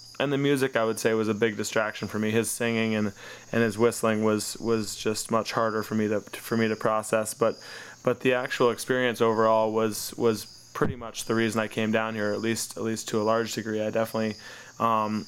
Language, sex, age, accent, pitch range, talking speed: English, male, 20-39, American, 110-120 Hz, 225 wpm